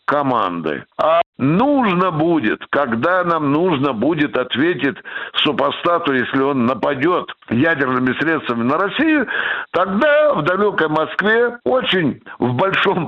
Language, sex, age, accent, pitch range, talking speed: Russian, male, 60-79, native, 135-185 Hz, 110 wpm